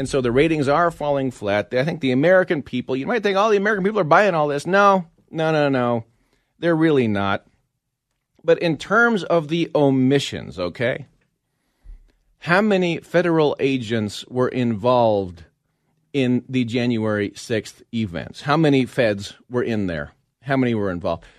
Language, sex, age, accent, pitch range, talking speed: English, male, 40-59, American, 125-175 Hz, 165 wpm